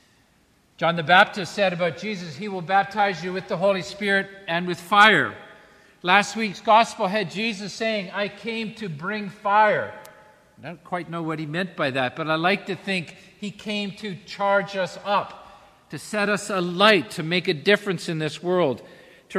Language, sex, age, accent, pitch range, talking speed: English, male, 50-69, American, 165-205 Hz, 185 wpm